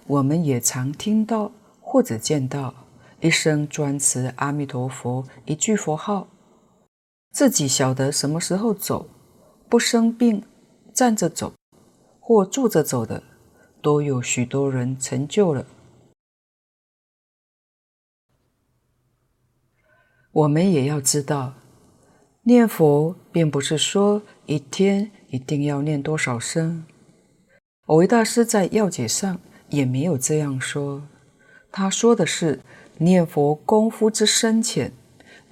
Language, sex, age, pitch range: Chinese, female, 50-69, 140-215 Hz